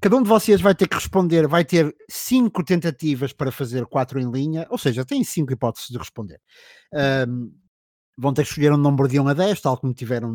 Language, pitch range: Portuguese, 140-195 Hz